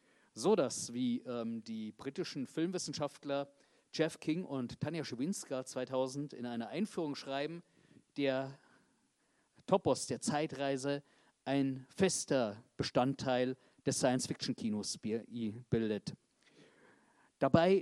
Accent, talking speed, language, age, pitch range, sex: German, 95 wpm, German, 40-59, 125-150 Hz, male